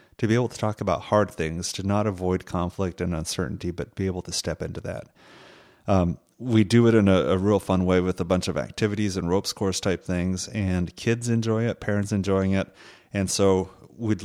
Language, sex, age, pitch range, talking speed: English, male, 30-49, 90-110 Hz, 215 wpm